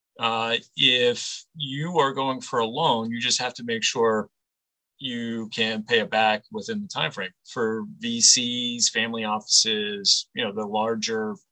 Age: 40-59